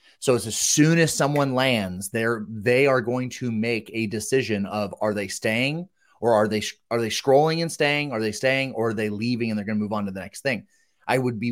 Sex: male